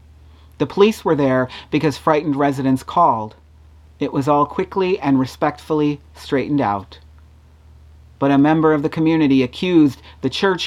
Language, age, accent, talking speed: English, 40-59, American, 140 wpm